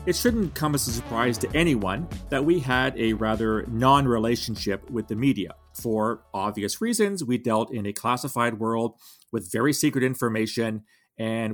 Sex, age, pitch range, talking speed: male, 30-49, 110-145 Hz, 160 wpm